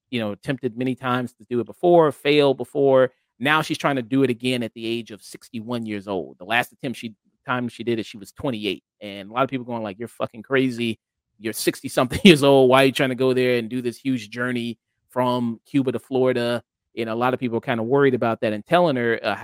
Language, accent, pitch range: English, American, 110-130 Hz